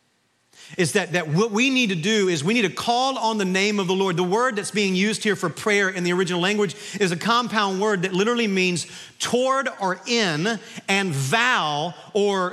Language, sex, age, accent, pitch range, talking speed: English, male, 40-59, American, 175-230 Hz, 210 wpm